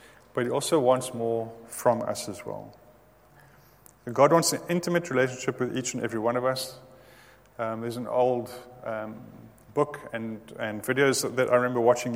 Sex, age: male, 30-49